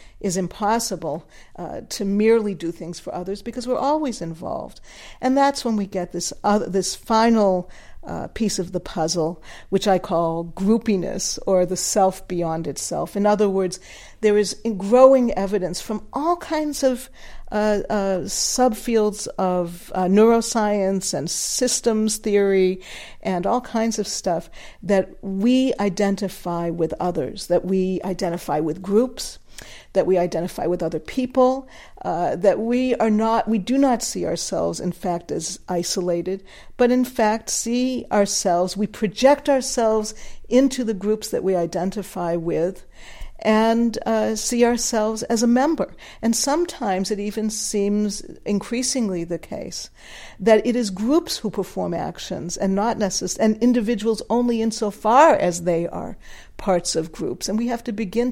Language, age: English, 50-69